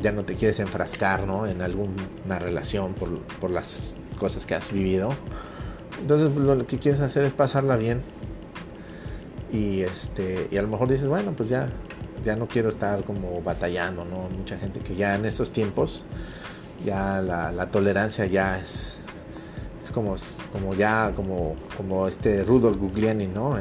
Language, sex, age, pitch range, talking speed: Spanish, male, 30-49, 95-115 Hz, 165 wpm